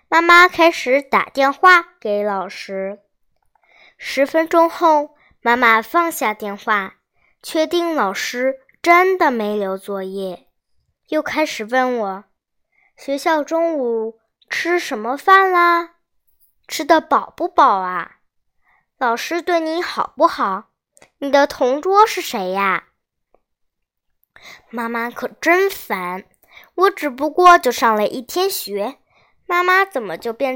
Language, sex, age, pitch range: Chinese, male, 10-29, 220-335 Hz